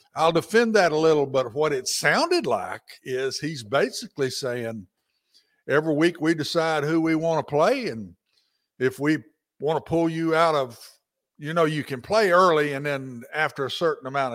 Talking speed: 185 wpm